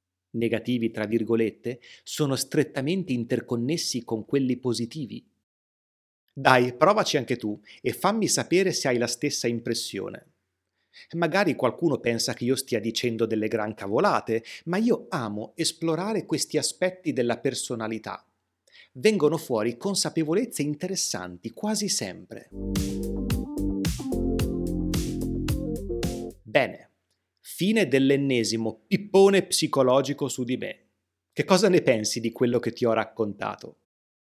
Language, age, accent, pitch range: Italian, 30-49, native, 115-165 Hz